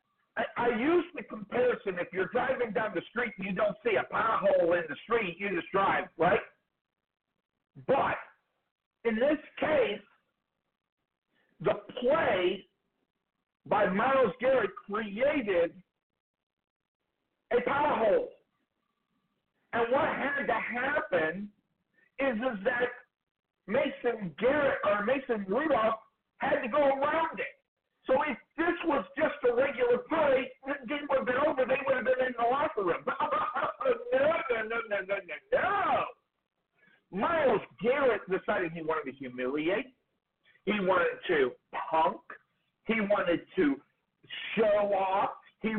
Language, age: English, 50-69